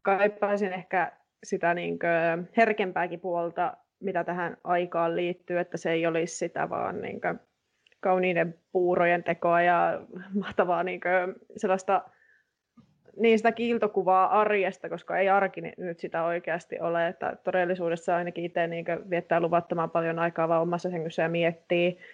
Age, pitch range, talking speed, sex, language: 20-39, 175-195 Hz, 140 wpm, female, Finnish